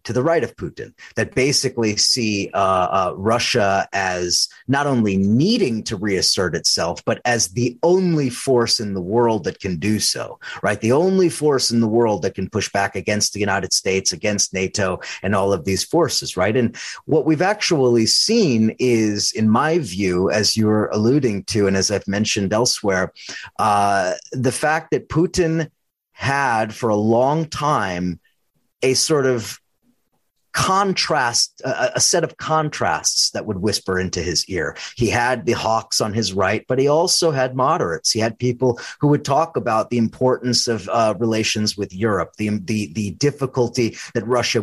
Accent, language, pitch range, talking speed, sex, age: American, English, 100-130 Hz, 170 wpm, male, 30-49